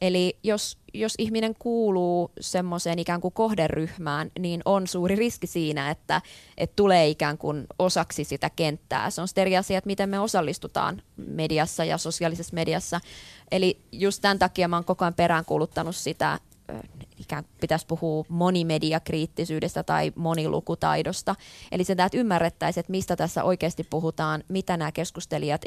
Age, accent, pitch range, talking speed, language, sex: 20-39, native, 160-185 Hz, 140 wpm, Finnish, female